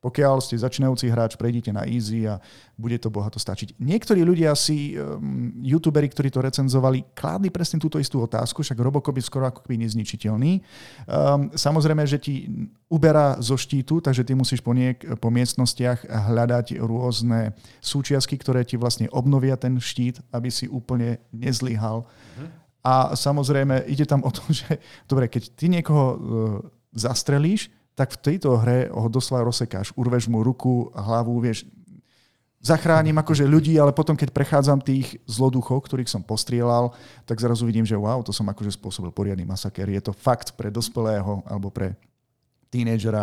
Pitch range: 115-140 Hz